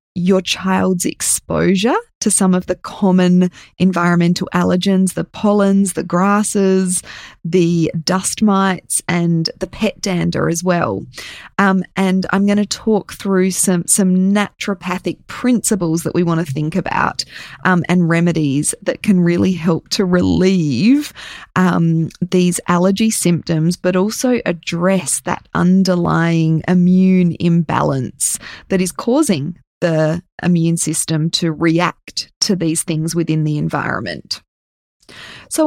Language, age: English, 20-39